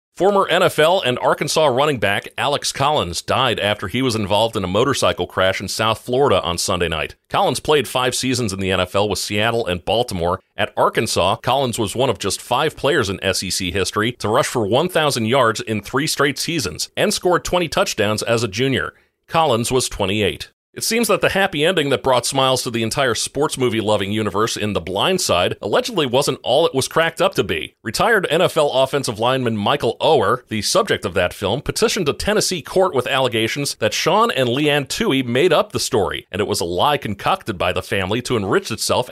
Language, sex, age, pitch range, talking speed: English, male, 40-59, 105-135 Hz, 200 wpm